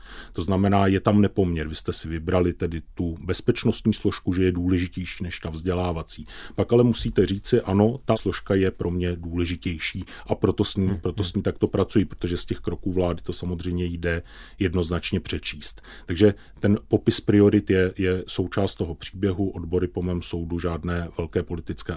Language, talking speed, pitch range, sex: Czech, 170 wpm, 85-100 Hz, male